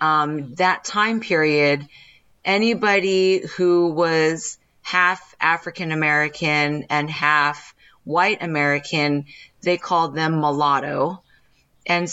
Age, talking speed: 30-49, 90 wpm